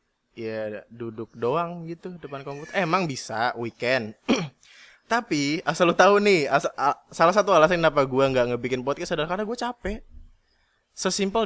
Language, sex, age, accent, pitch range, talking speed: Indonesian, male, 20-39, native, 120-190 Hz, 150 wpm